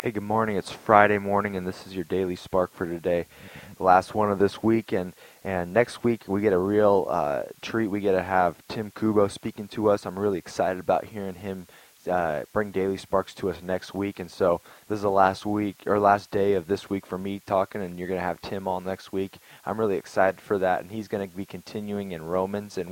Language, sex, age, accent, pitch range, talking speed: English, male, 20-39, American, 95-115 Hz, 230 wpm